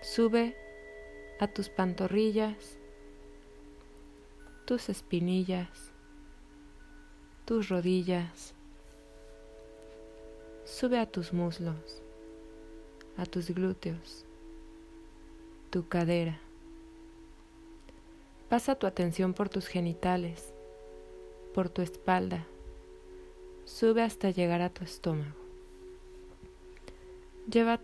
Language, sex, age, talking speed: Spanish, female, 30-49, 70 wpm